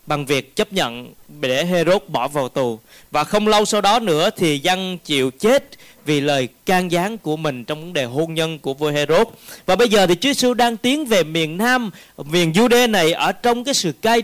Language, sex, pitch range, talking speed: Vietnamese, male, 150-215 Hz, 220 wpm